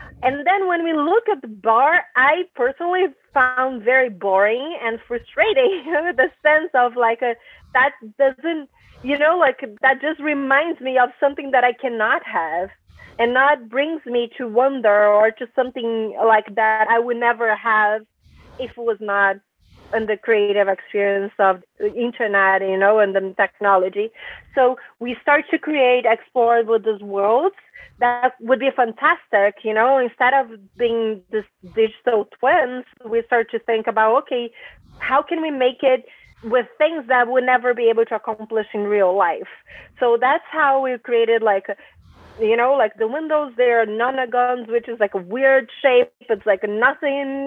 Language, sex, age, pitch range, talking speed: English, female, 30-49, 220-270 Hz, 170 wpm